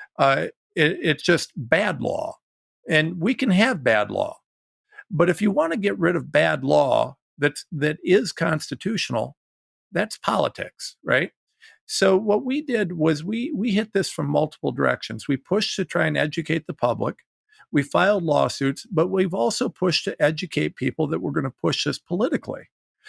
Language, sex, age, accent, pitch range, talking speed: English, male, 50-69, American, 155-225 Hz, 165 wpm